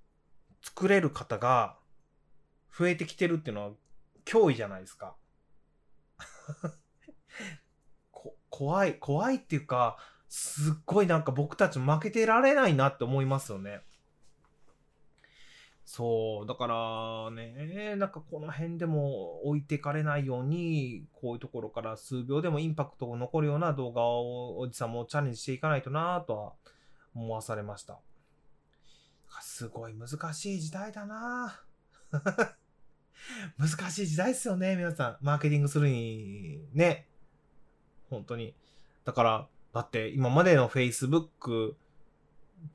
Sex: male